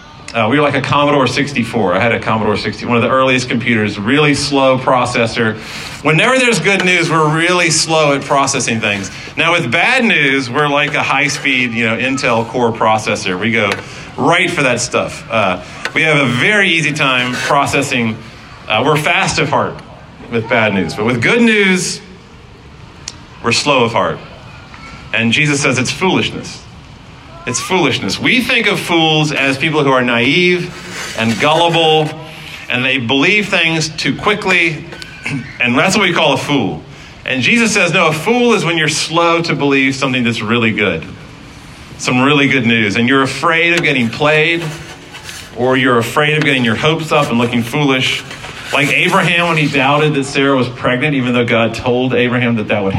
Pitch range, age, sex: 125-160 Hz, 40-59, male